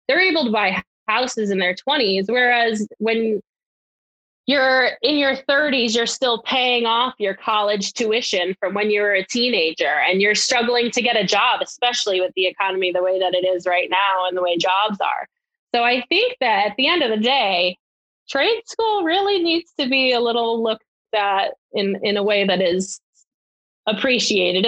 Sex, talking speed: female, 185 wpm